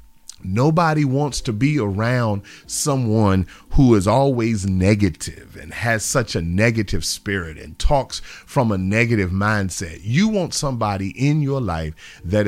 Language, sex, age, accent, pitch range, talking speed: English, male, 30-49, American, 95-140 Hz, 140 wpm